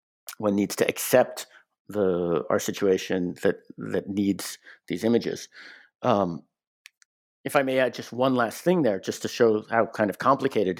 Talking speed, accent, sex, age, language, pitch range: 160 wpm, American, male, 50-69, English, 105-135 Hz